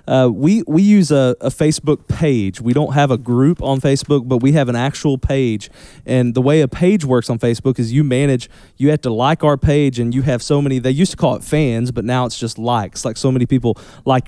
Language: English